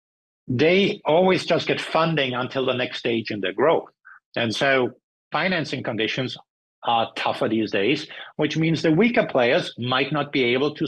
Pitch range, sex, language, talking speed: 120-155 Hz, male, English, 165 wpm